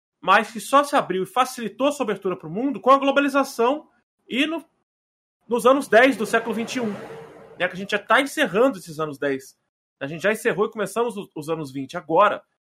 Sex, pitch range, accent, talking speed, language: male, 165-235 Hz, Brazilian, 215 wpm, Portuguese